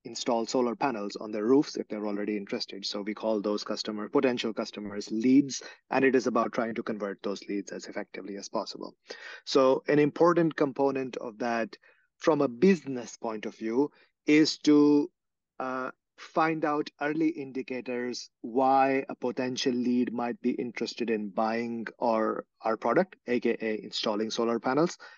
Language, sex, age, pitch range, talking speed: English, male, 30-49, 115-140 Hz, 155 wpm